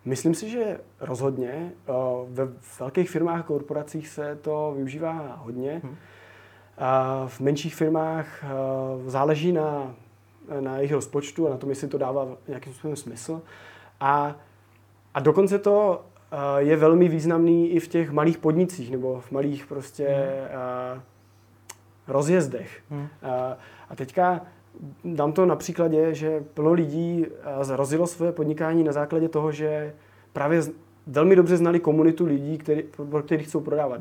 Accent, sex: native, male